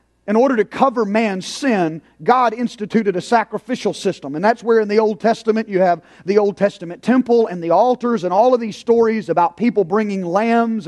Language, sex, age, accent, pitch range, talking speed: English, male, 40-59, American, 205-255 Hz, 200 wpm